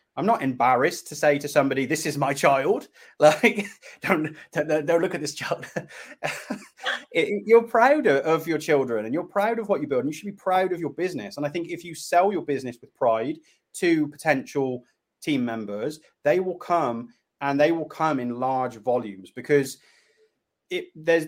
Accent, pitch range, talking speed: British, 130-165 Hz, 185 wpm